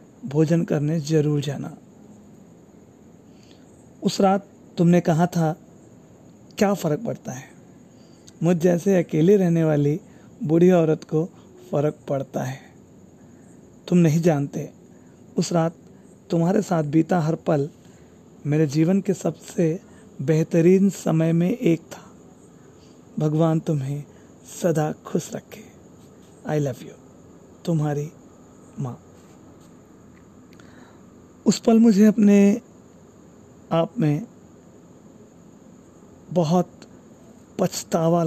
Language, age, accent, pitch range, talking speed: Hindi, 30-49, native, 155-185 Hz, 95 wpm